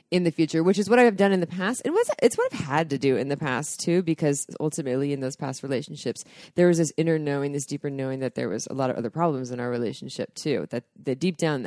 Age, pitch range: 20-39, 140-180 Hz